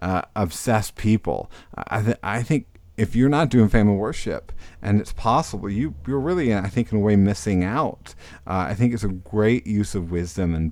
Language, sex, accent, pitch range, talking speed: English, male, American, 95-115 Hz, 200 wpm